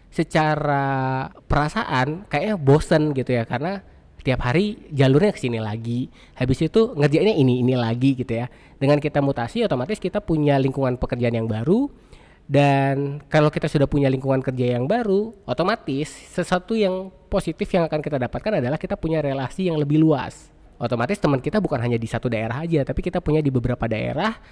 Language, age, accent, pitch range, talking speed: Indonesian, 20-39, native, 130-180 Hz, 170 wpm